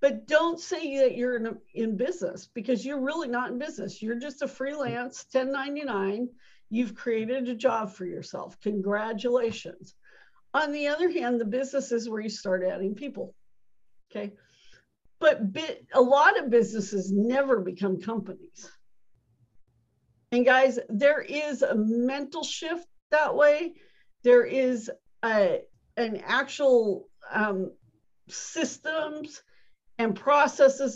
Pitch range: 210-285 Hz